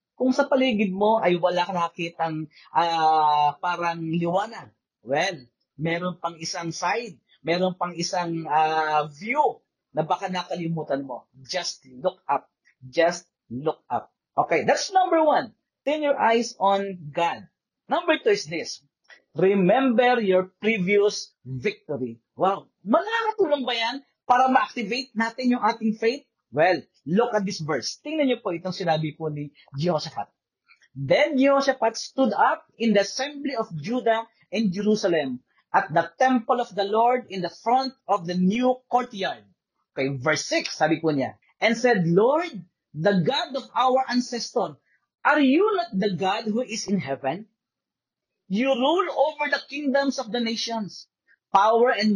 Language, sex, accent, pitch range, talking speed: English, male, Filipino, 170-245 Hz, 145 wpm